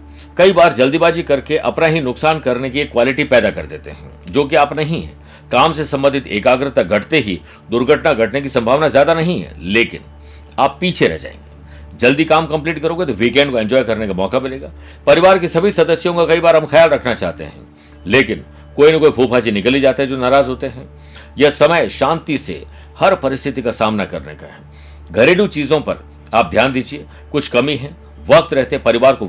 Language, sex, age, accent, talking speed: Hindi, male, 60-79, native, 195 wpm